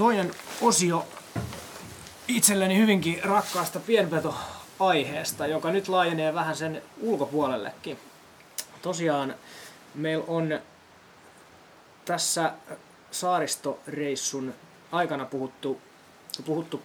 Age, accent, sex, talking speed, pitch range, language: 20-39, native, male, 70 wpm, 135-180 Hz, Finnish